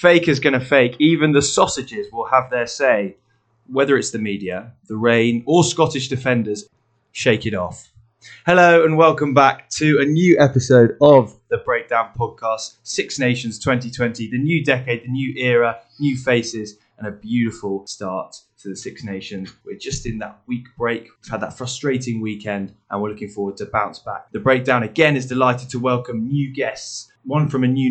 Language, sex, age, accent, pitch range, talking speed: English, male, 20-39, British, 110-140 Hz, 185 wpm